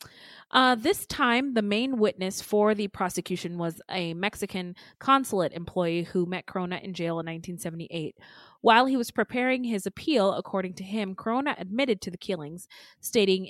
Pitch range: 180-235 Hz